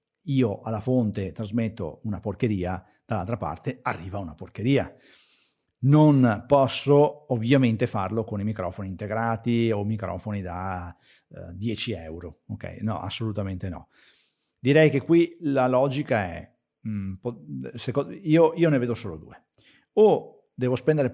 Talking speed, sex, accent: 120 wpm, male, native